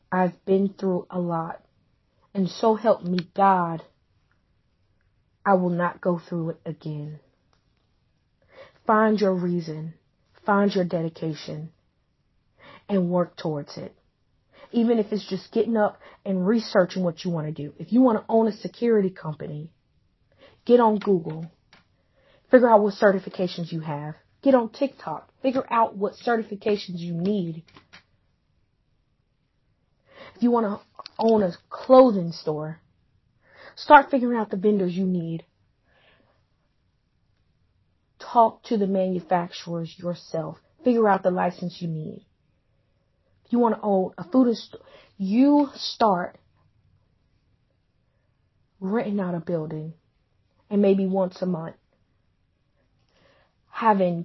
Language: English